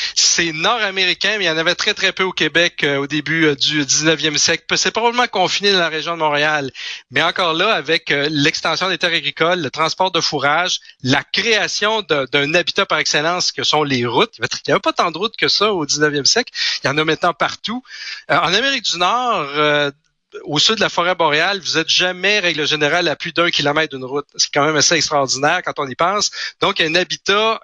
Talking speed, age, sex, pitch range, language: 230 wpm, 40-59, male, 150-195 Hz, French